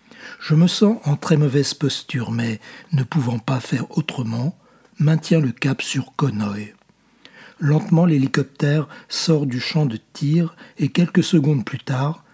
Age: 60-79